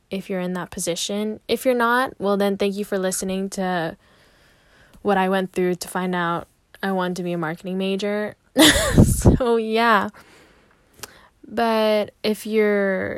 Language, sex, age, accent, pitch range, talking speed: English, female, 10-29, American, 185-205 Hz, 155 wpm